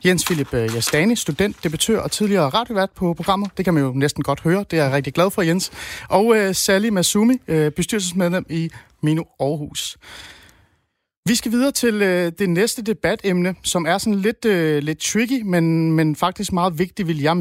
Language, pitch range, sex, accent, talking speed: Danish, 150-195 Hz, male, native, 190 wpm